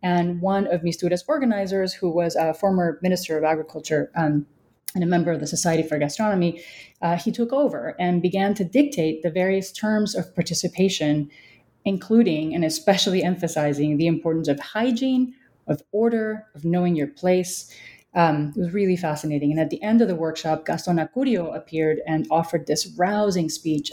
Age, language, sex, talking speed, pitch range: 30-49, English, female, 170 wpm, 160-195 Hz